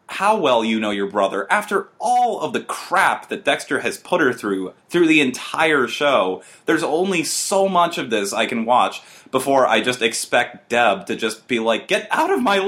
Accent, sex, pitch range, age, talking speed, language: American, male, 115-190 Hz, 30-49, 205 wpm, English